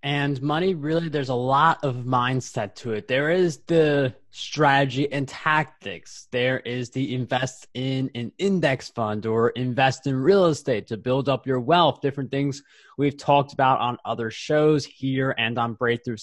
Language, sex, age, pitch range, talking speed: English, male, 20-39, 125-150 Hz, 170 wpm